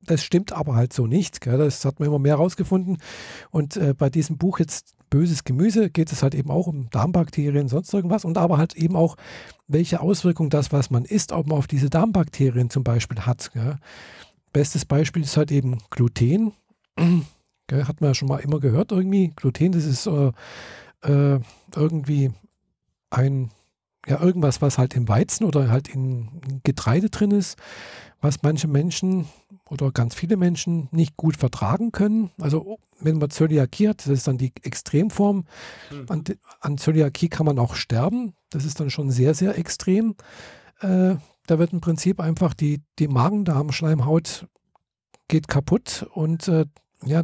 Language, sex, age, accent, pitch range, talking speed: German, male, 50-69, German, 140-175 Hz, 165 wpm